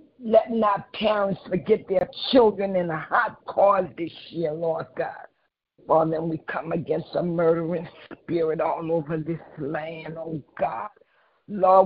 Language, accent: English, American